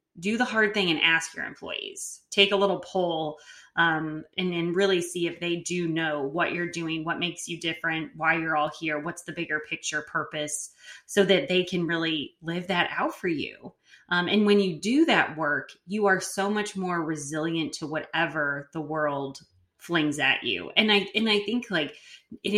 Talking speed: 195 wpm